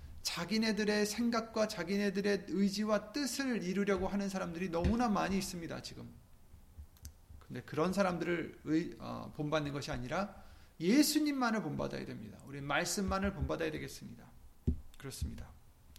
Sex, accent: male, native